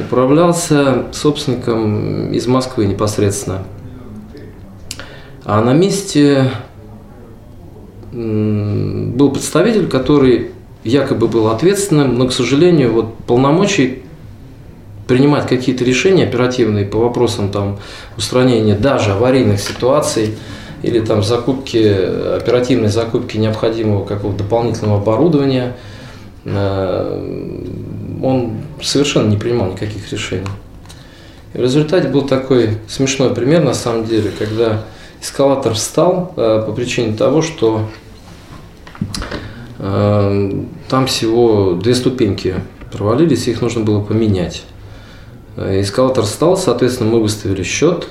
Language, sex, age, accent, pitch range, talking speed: Russian, male, 20-39, native, 105-130 Hz, 100 wpm